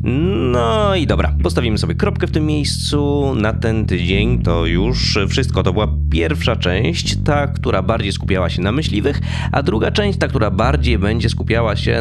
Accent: native